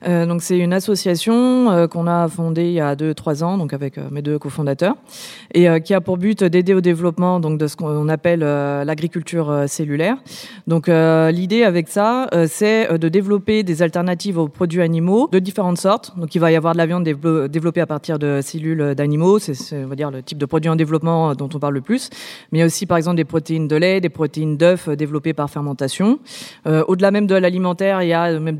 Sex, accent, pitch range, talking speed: female, French, 155-185 Hz, 215 wpm